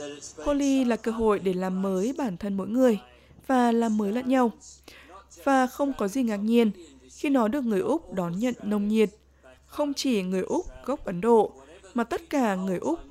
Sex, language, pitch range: female, Vietnamese, 190-245 Hz